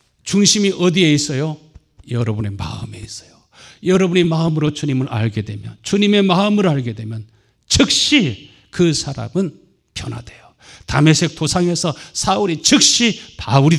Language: Korean